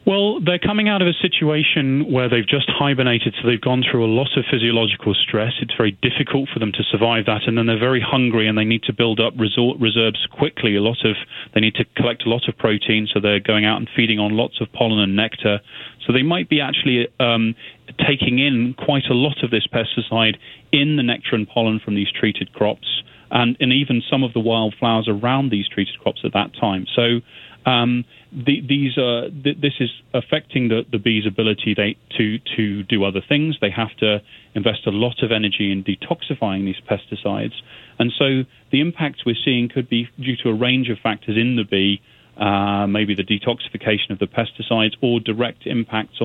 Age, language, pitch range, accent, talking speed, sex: 30-49, English, 110-130 Hz, British, 210 wpm, male